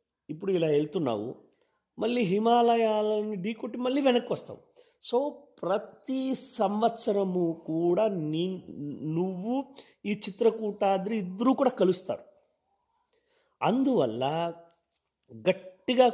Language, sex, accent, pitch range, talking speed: Telugu, male, native, 160-245 Hz, 80 wpm